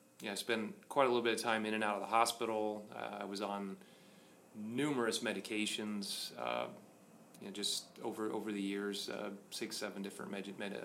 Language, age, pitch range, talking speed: English, 30-49, 100-110 Hz, 205 wpm